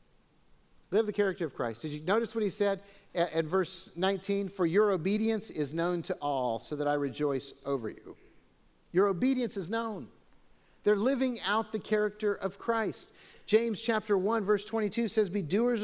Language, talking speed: English, 180 wpm